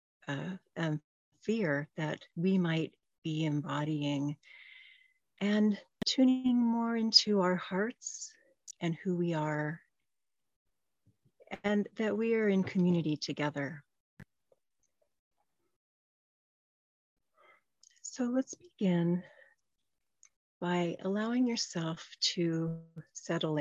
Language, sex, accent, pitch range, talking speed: English, female, American, 155-205 Hz, 80 wpm